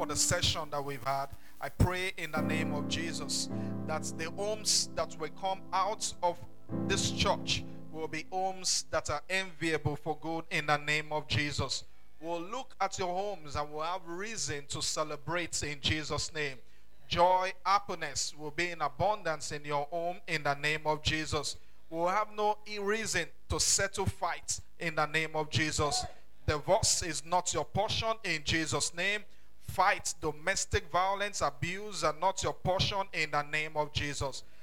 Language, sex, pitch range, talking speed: English, male, 145-180 Hz, 170 wpm